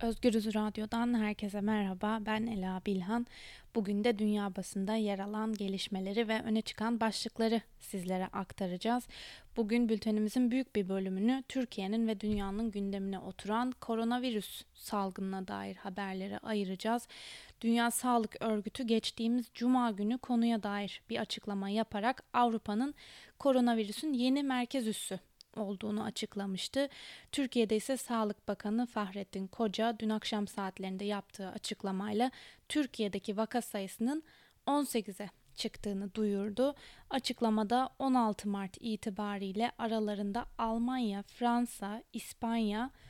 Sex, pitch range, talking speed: female, 205-240 Hz, 110 wpm